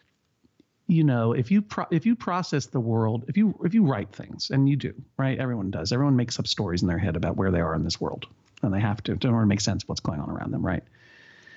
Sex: male